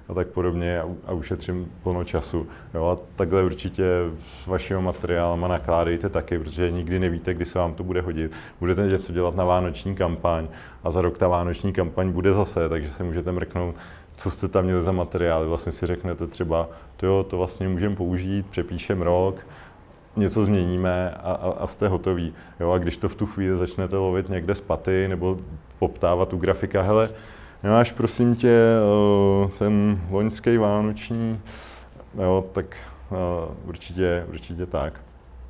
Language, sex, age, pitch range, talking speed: Czech, male, 30-49, 85-95 Hz, 165 wpm